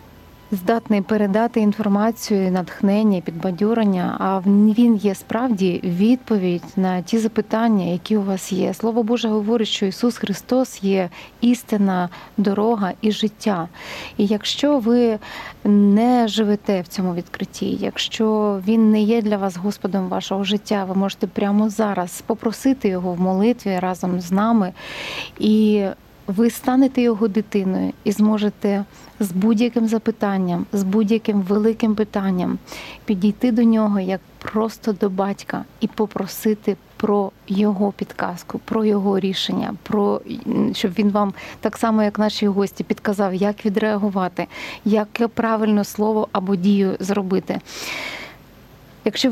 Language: Ukrainian